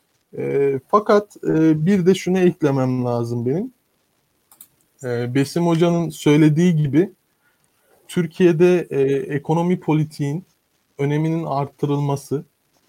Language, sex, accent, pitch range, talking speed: Turkish, male, native, 140-175 Hz, 95 wpm